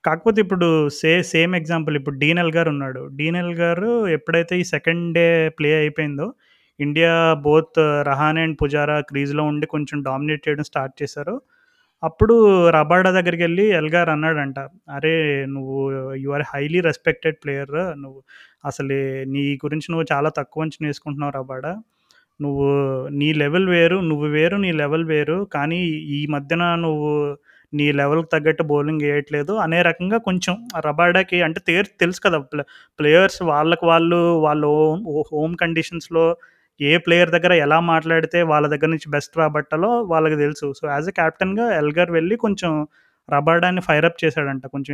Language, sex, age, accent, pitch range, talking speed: Telugu, male, 30-49, native, 145-170 Hz, 145 wpm